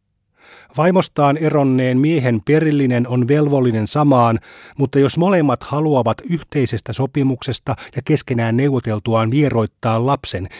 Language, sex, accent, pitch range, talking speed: Finnish, male, native, 110-145 Hz, 100 wpm